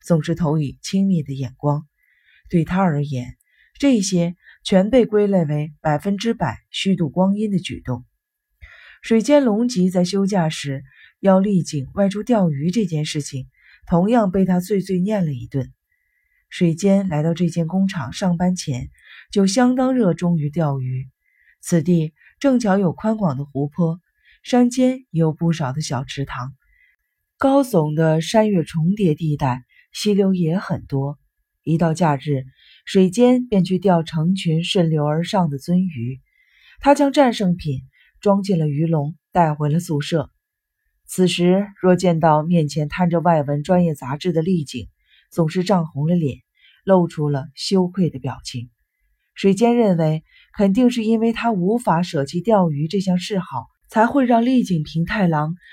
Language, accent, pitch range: Chinese, native, 150-200 Hz